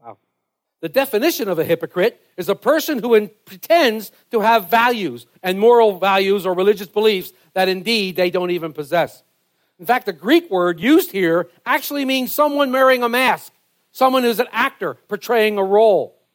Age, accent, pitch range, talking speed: 50-69, American, 185-260 Hz, 165 wpm